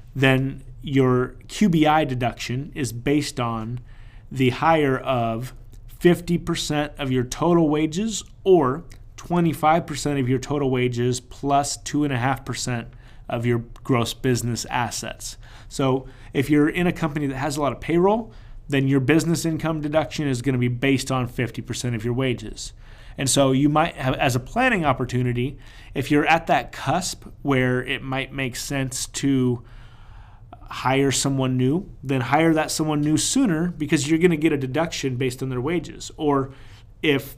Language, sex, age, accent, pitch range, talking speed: English, male, 30-49, American, 120-150 Hz, 155 wpm